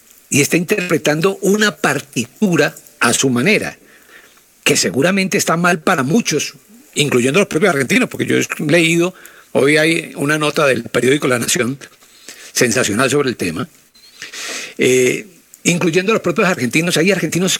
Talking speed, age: 145 wpm, 60-79